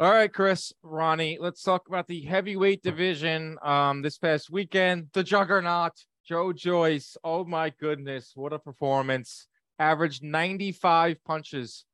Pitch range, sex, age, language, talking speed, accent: 135-175 Hz, male, 20-39, English, 135 wpm, American